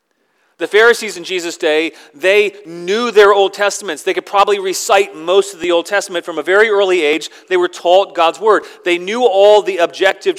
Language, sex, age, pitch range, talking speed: English, male, 40-59, 160-210 Hz, 195 wpm